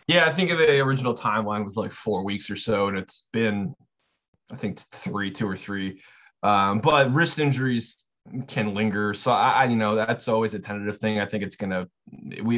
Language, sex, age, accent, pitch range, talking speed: English, male, 20-39, American, 100-115 Hz, 200 wpm